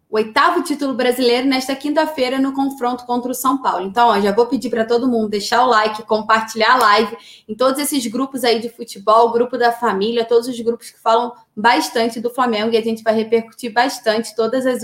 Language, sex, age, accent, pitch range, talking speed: Portuguese, female, 20-39, Brazilian, 215-255 Hz, 205 wpm